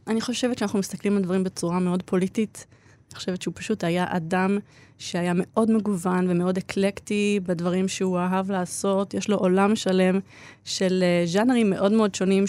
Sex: female